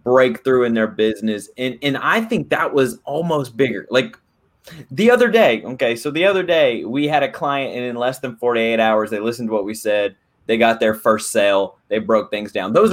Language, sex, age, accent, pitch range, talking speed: English, male, 20-39, American, 105-135 Hz, 220 wpm